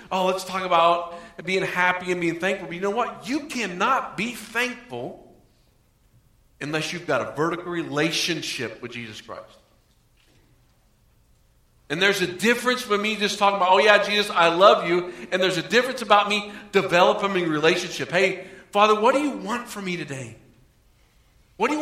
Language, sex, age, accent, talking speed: English, male, 50-69, American, 170 wpm